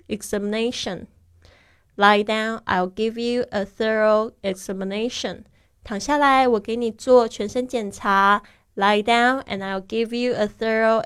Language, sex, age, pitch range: Chinese, female, 20-39, 195-240 Hz